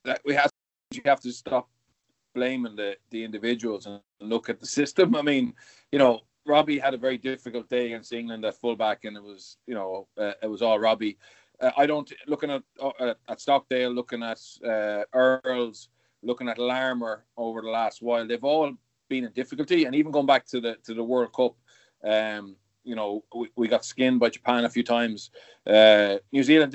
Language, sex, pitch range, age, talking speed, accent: English, male, 110-130 Hz, 30-49, 200 wpm, Irish